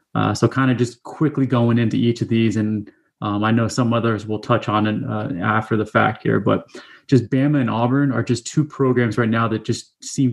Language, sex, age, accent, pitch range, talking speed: English, male, 20-39, American, 110-125 Hz, 230 wpm